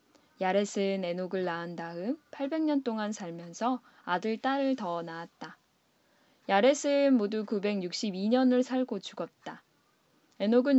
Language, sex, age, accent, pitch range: Korean, female, 10-29, native, 180-255 Hz